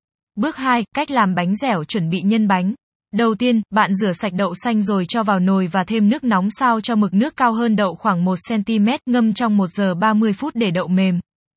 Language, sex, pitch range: Vietnamese, female, 195-235 Hz